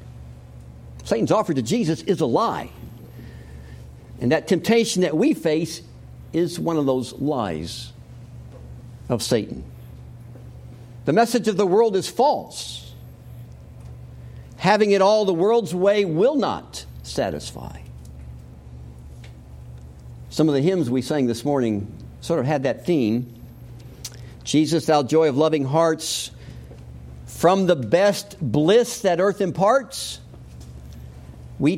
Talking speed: 120 wpm